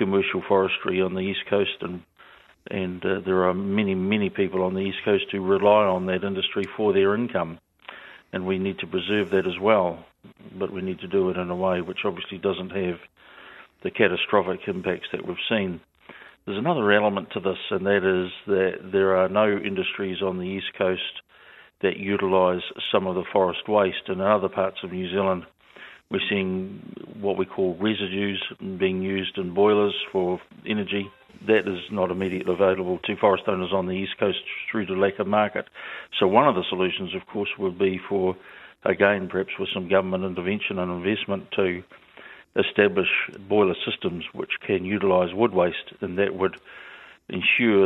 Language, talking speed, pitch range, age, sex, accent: English, 180 wpm, 95-100 Hz, 50-69, male, Australian